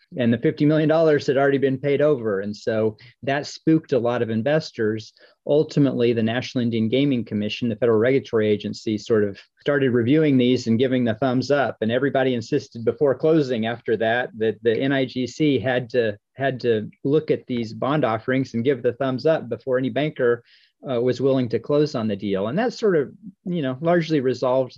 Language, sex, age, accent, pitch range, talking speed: English, male, 40-59, American, 110-135 Hz, 195 wpm